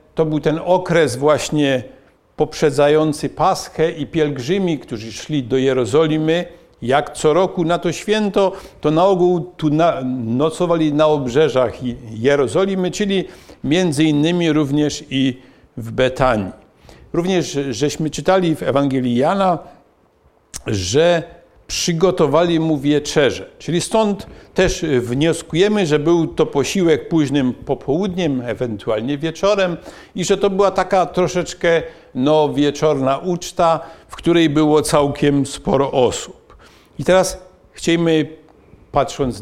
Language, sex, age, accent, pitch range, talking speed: Polish, male, 50-69, native, 140-180 Hz, 115 wpm